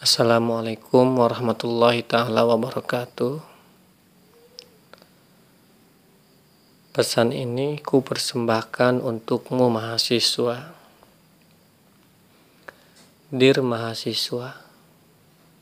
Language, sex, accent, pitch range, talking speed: Indonesian, male, native, 120-140 Hz, 40 wpm